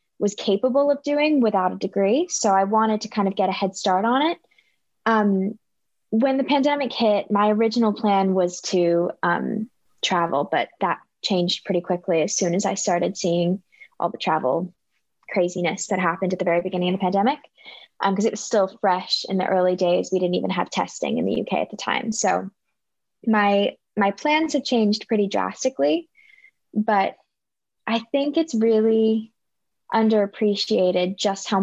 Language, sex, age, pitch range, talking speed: English, female, 10-29, 185-220 Hz, 175 wpm